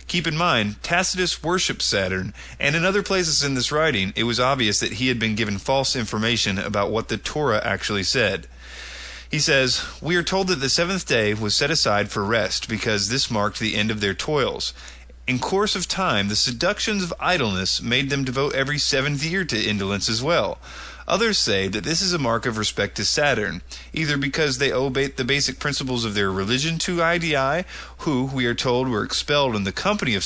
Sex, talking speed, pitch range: male, 200 wpm, 105-150 Hz